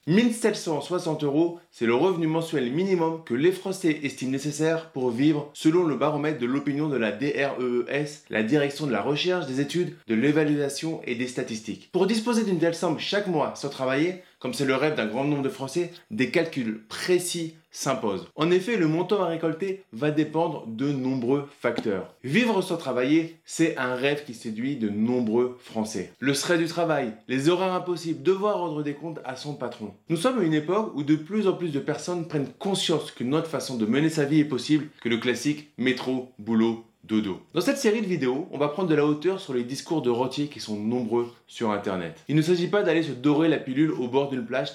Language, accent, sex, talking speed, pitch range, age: French, French, male, 205 wpm, 130-170 Hz, 20-39